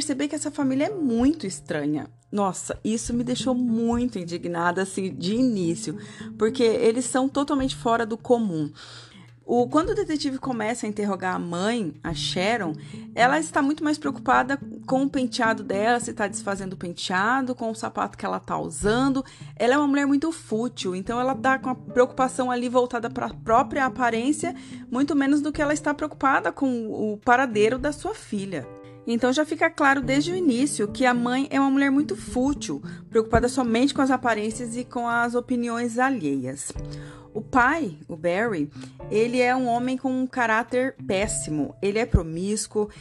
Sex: female